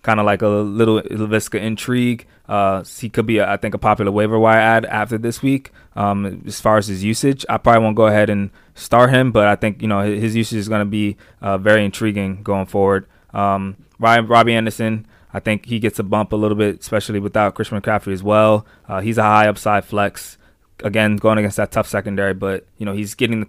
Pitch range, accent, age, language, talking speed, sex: 100-110 Hz, American, 20-39, English, 225 wpm, male